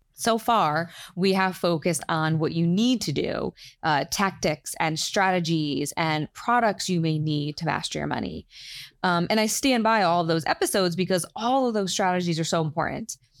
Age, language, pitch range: 20-39, English, 160-195 Hz